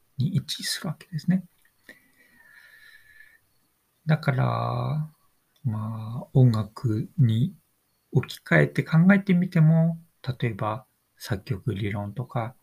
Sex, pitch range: male, 125-190 Hz